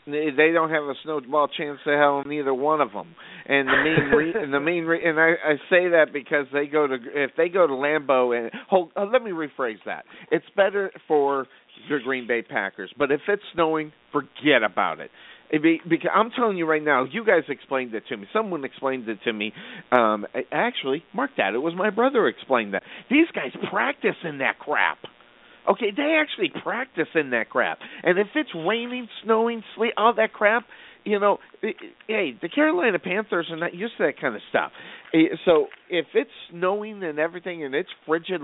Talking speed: 205 wpm